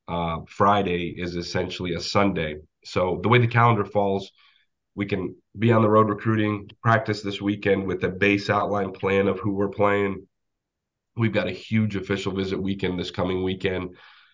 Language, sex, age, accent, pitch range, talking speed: English, male, 30-49, American, 90-105 Hz, 170 wpm